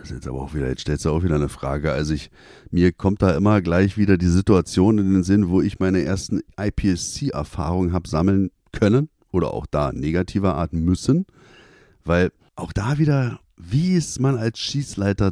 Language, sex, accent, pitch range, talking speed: German, male, German, 85-115 Hz, 190 wpm